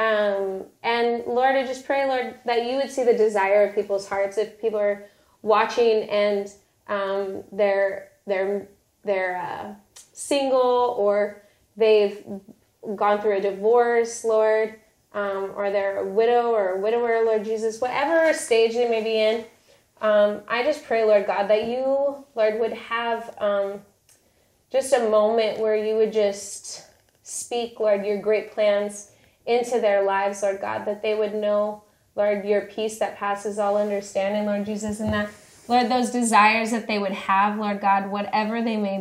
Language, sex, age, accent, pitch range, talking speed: English, female, 20-39, American, 200-225 Hz, 165 wpm